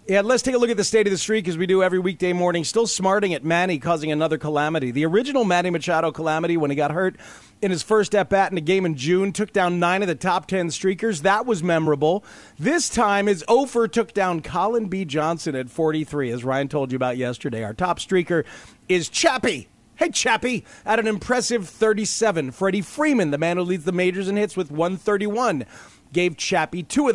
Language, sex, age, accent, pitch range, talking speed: English, male, 40-59, American, 165-220 Hz, 215 wpm